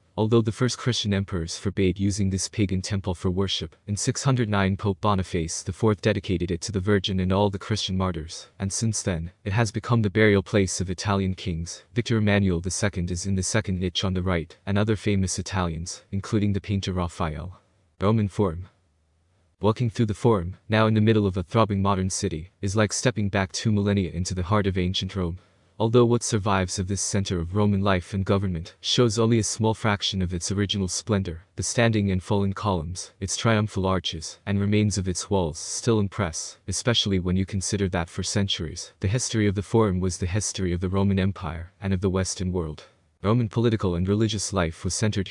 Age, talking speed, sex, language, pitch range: 20-39, 200 wpm, male, English, 95-105 Hz